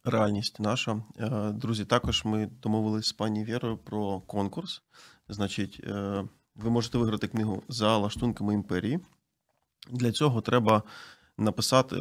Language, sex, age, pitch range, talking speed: Ukrainian, male, 30-49, 105-120 Hz, 115 wpm